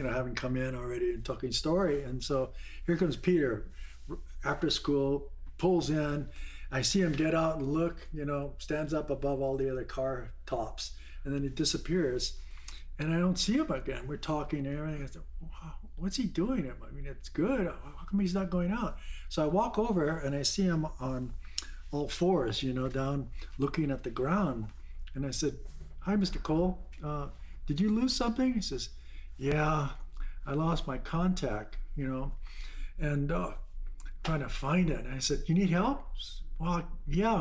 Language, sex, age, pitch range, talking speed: English, male, 50-69, 130-175 Hz, 185 wpm